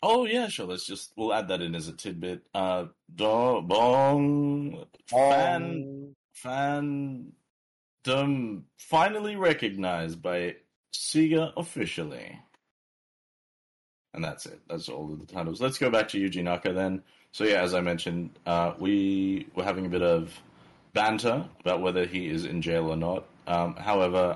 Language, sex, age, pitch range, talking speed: English, male, 30-49, 85-110 Hz, 150 wpm